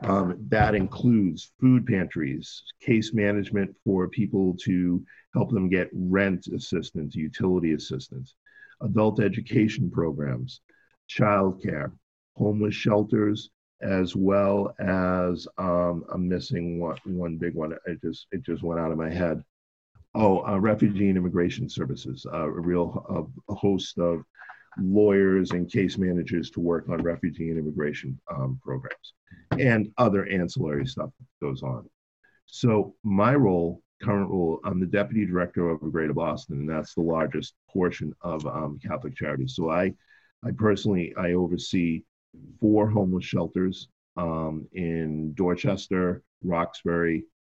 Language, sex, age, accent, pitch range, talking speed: English, male, 50-69, American, 80-100 Hz, 135 wpm